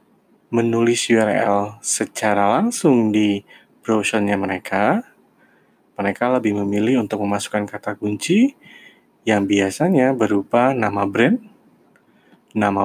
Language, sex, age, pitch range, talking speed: Indonesian, male, 20-39, 100-120 Hz, 95 wpm